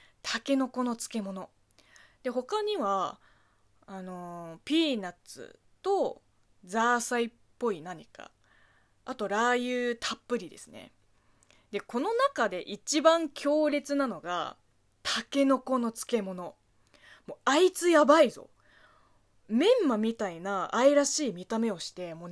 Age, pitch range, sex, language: 20-39, 200-305 Hz, female, Japanese